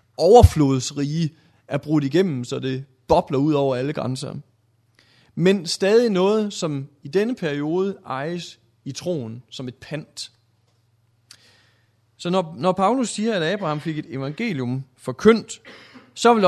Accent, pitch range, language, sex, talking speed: native, 120-175 Hz, Danish, male, 135 wpm